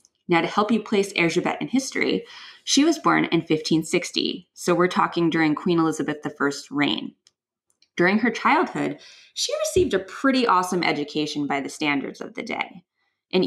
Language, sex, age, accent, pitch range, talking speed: English, female, 20-39, American, 150-200 Hz, 165 wpm